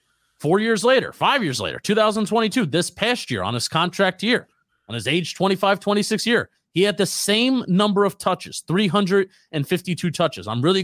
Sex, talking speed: male, 170 wpm